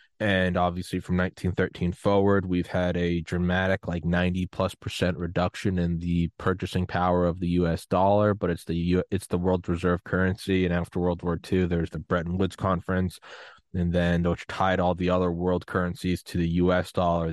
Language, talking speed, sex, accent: English, 185 wpm, male, American